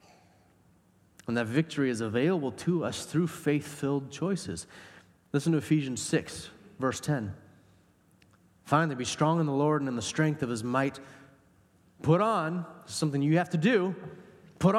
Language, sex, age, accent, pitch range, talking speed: English, male, 30-49, American, 130-185 Hz, 150 wpm